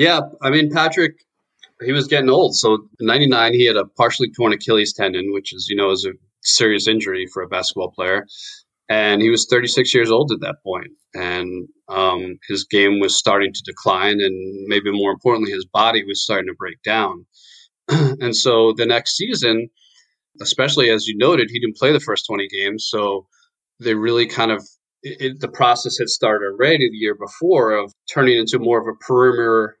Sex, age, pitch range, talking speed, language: male, 20-39, 100-125 Hz, 190 wpm, English